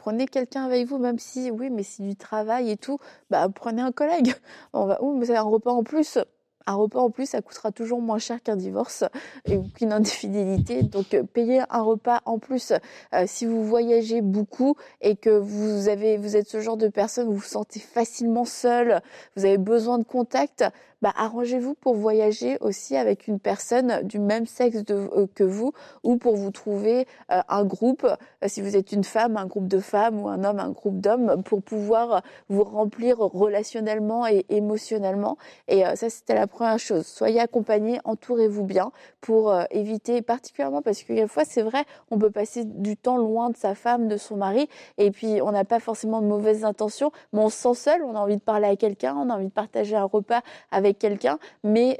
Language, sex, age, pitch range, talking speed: French, female, 20-39, 205-240 Hz, 205 wpm